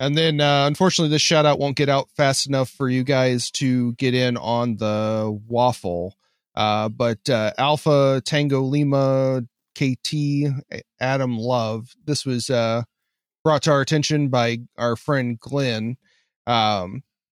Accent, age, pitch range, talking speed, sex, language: American, 30-49, 110-135 Hz, 145 wpm, male, English